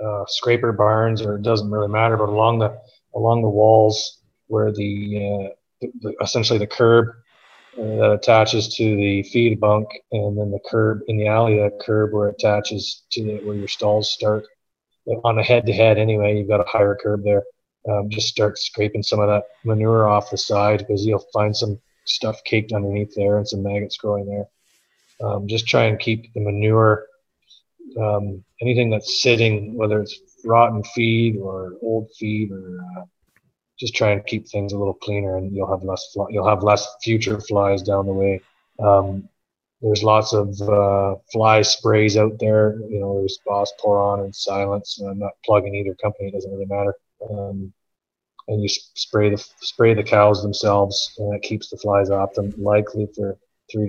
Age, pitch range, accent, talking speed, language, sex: 30-49, 100-110 Hz, American, 185 wpm, English, male